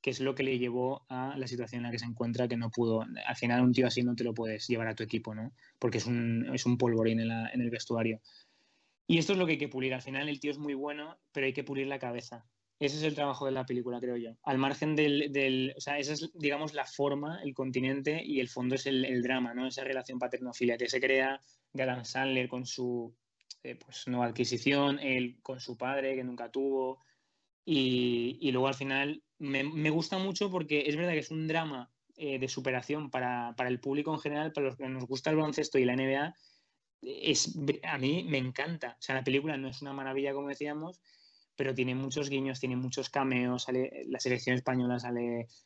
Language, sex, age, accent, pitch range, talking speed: Spanish, male, 20-39, Spanish, 120-140 Hz, 235 wpm